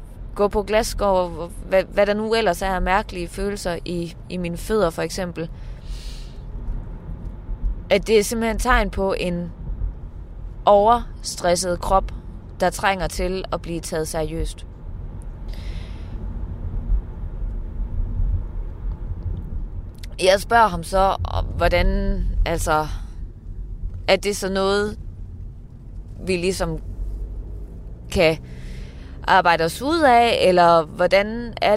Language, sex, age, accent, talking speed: Danish, female, 20-39, native, 100 wpm